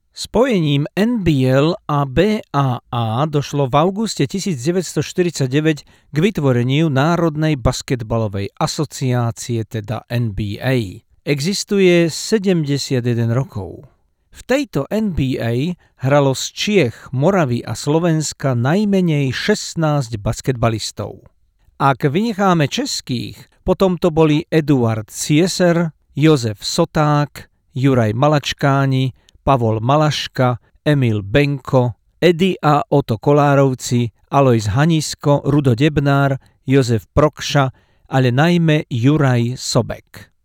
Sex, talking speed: male, 90 wpm